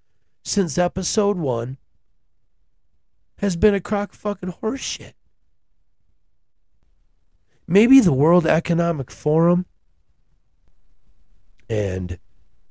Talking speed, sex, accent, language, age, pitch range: 75 wpm, male, American, English, 40-59, 105-160 Hz